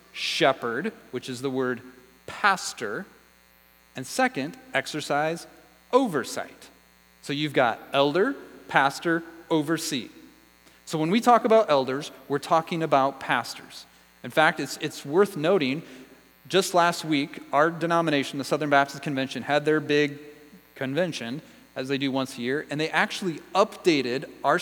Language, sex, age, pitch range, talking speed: English, male, 30-49, 125-170 Hz, 135 wpm